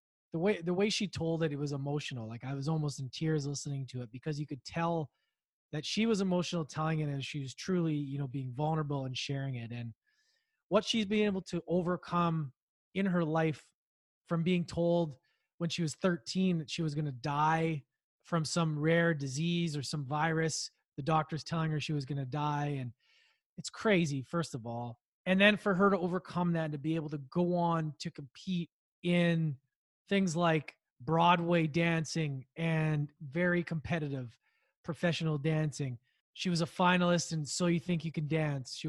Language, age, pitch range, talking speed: English, 20-39, 145-175 Hz, 185 wpm